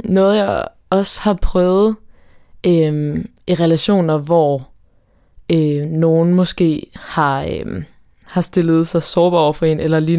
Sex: female